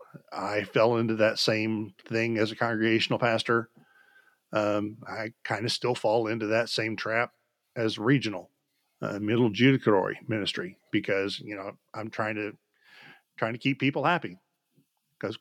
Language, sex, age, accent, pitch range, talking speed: English, male, 40-59, American, 110-130 Hz, 150 wpm